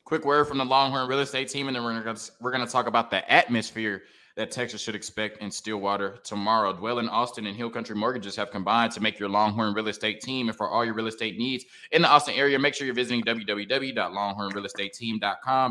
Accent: American